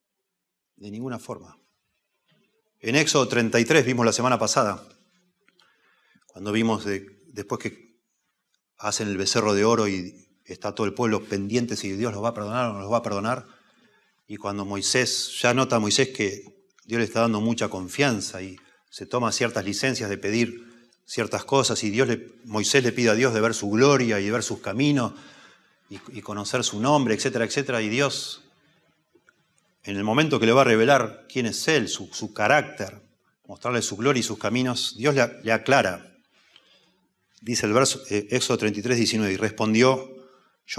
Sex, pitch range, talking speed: male, 105-130 Hz, 170 wpm